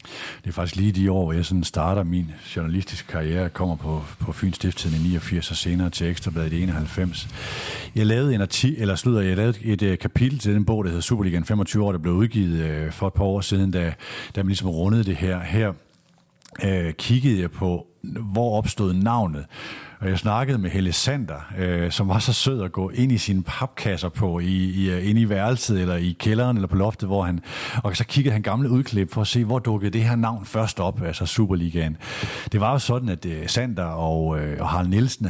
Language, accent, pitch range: Danish, native, 90-115 Hz